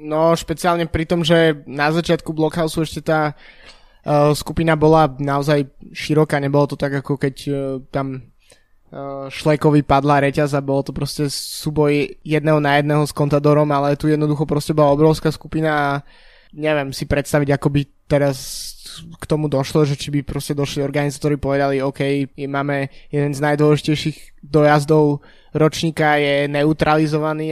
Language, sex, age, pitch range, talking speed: Slovak, male, 20-39, 145-155 Hz, 150 wpm